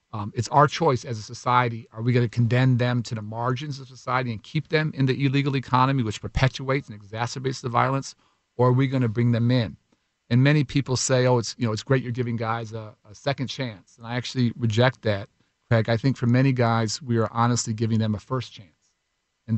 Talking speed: 225 wpm